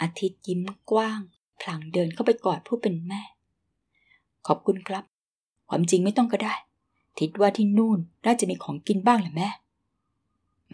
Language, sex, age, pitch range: Thai, female, 20-39, 170-215 Hz